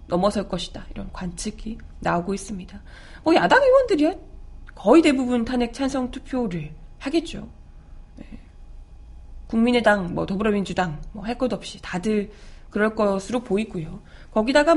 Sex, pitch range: female, 200-285 Hz